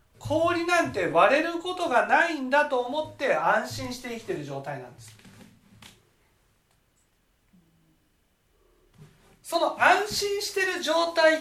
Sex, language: male, Japanese